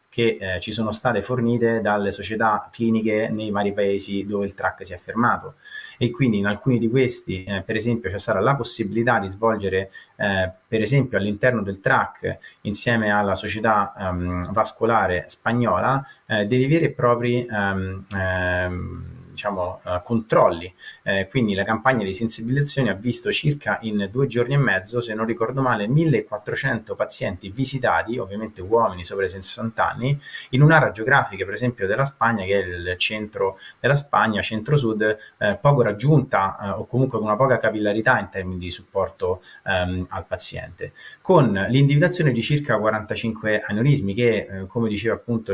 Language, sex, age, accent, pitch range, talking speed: Italian, male, 30-49, native, 100-125 Hz, 160 wpm